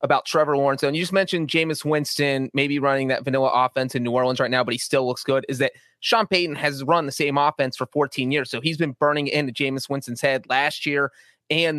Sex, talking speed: male, 240 wpm